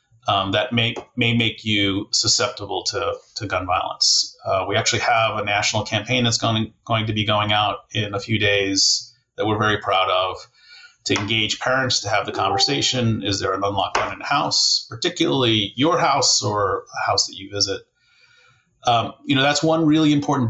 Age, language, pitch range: 30-49, English, 105-130 Hz